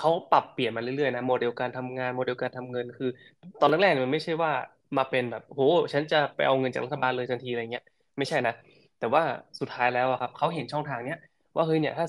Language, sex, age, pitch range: Thai, male, 20-39, 120-145 Hz